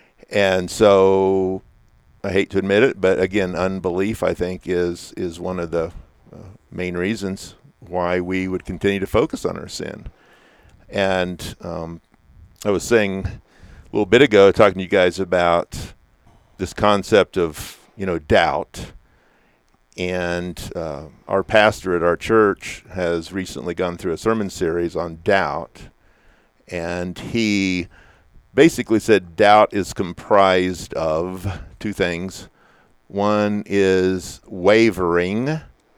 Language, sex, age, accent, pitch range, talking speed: English, male, 50-69, American, 90-100 Hz, 130 wpm